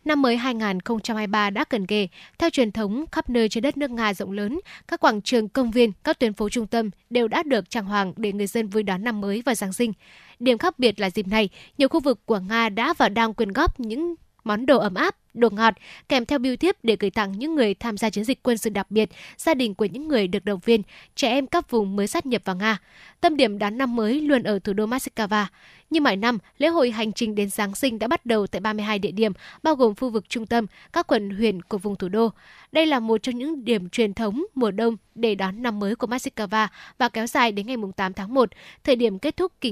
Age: 10-29